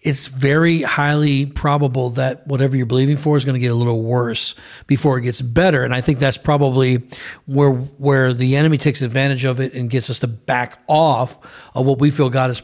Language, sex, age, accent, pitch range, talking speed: English, male, 40-59, American, 125-145 Hz, 215 wpm